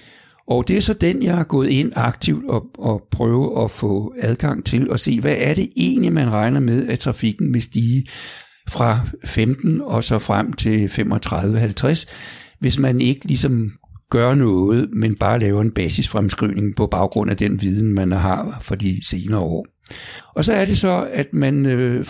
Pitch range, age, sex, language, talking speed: 105-135 Hz, 60-79, male, Danish, 180 wpm